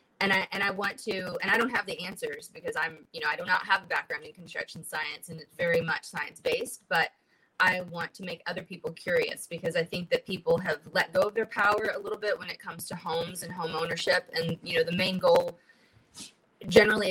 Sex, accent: female, American